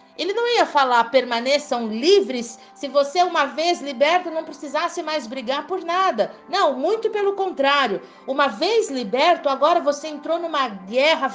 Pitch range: 235-315 Hz